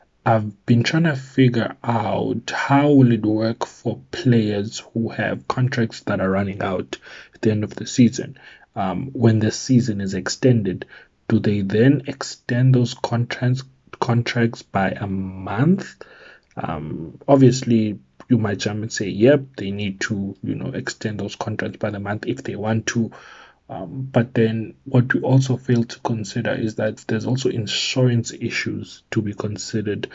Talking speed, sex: 165 wpm, male